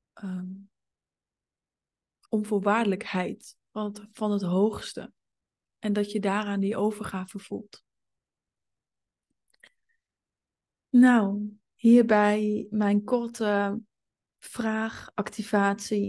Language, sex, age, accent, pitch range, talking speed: Dutch, female, 20-39, Dutch, 200-215 Hz, 65 wpm